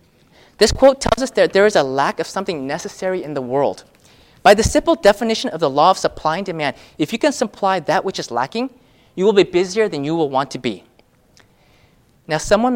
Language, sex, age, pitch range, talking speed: English, male, 30-49, 155-215 Hz, 215 wpm